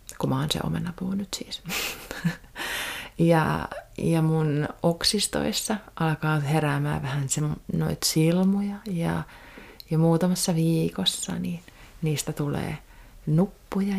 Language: Finnish